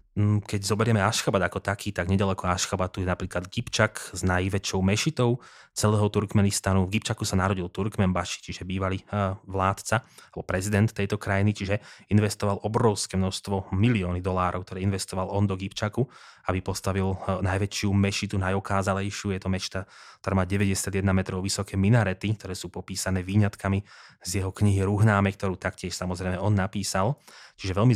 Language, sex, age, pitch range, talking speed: Slovak, male, 20-39, 95-110 Hz, 145 wpm